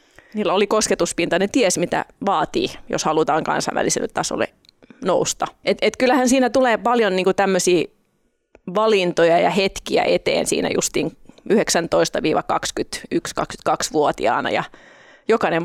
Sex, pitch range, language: female, 175-210 Hz, Finnish